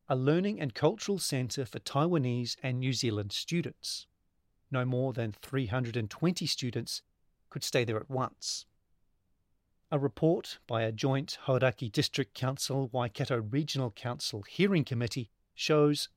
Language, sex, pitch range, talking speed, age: English, male, 115-145 Hz, 125 wpm, 40-59